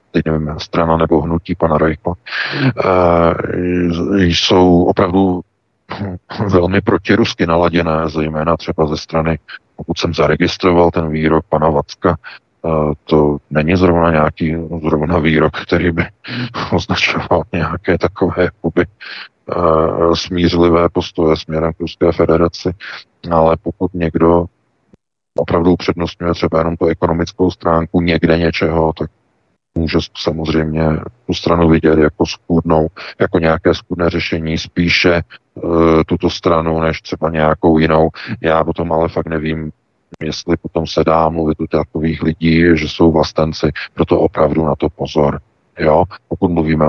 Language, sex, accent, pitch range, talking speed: Czech, male, native, 80-90 Hz, 125 wpm